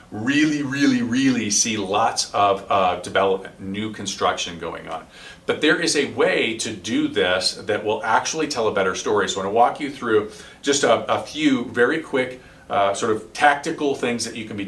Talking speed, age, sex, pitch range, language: 200 wpm, 40-59, male, 95-130 Hz, English